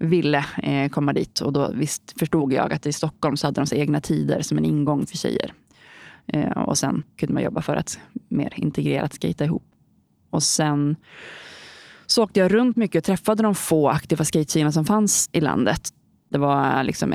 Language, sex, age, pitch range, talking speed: Swedish, female, 20-39, 150-180 Hz, 190 wpm